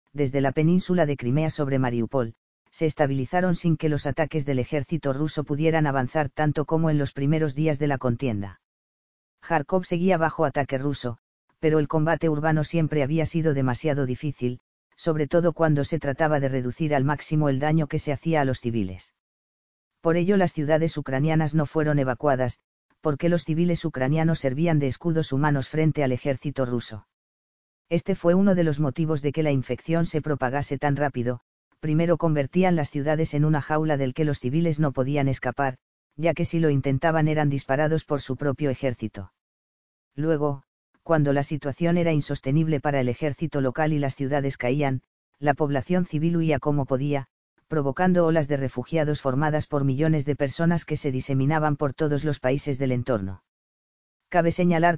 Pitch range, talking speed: 135-160 Hz, 170 wpm